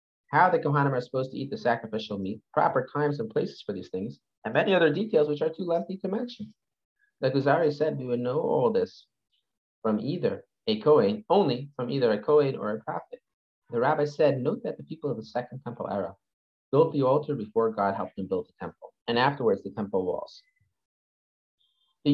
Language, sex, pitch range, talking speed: English, male, 125-210 Hz, 205 wpm